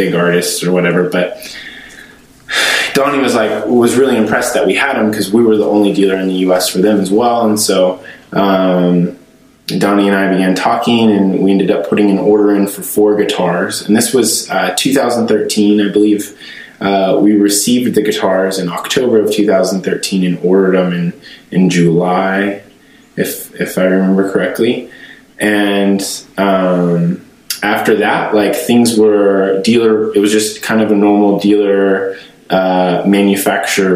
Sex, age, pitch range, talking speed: male, 20-39, 90-105 Hz, 165 wpm